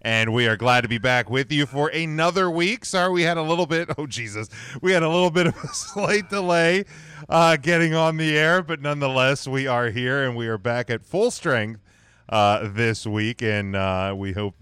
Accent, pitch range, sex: American, 105-145 Hz, male